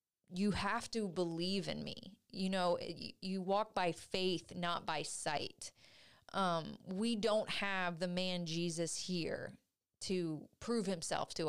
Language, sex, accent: English, female, American